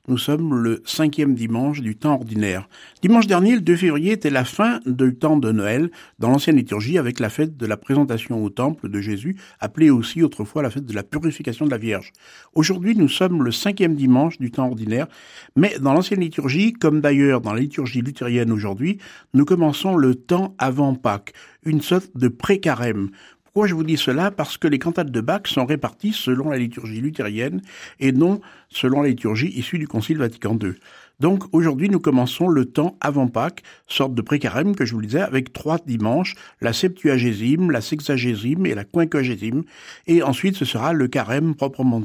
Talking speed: 190 wpm